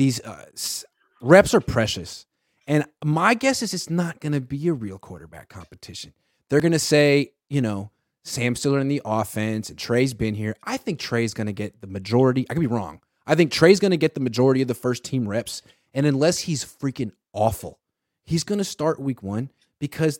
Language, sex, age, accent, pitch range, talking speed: English, male, 30-49, American, 115-155 Hz, 205 wpm